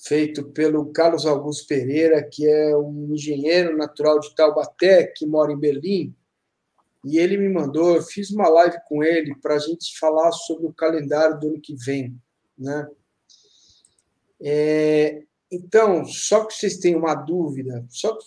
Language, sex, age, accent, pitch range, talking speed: Portuguese, male, 50-69, Brazilian, 150-180 Hz, 150 wpm